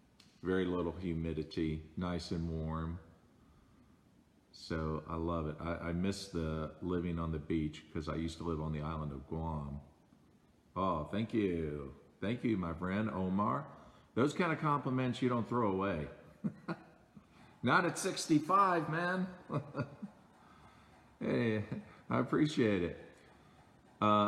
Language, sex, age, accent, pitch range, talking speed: English, male, 50-69, American, 85-115 Hz, 130 wpm